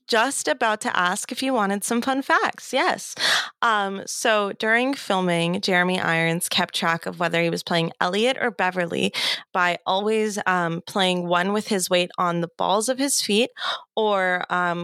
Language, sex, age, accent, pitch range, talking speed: English, female, 20-39, American, 170-210 Hz, 175 wpm